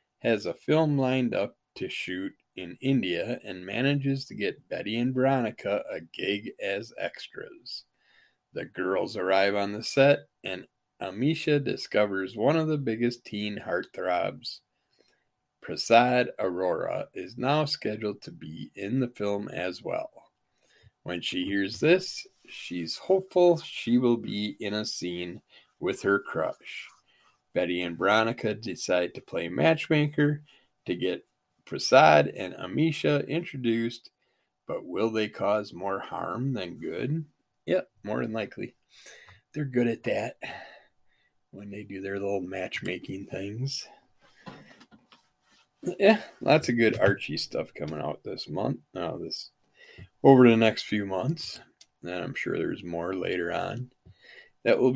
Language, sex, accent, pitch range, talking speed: English, male, American, 100-140 Hz, 135 wpm